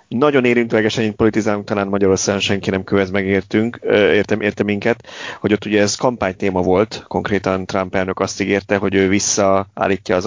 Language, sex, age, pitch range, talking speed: Hungarian, male, 30-49, 95-110 Hz, 160 wpm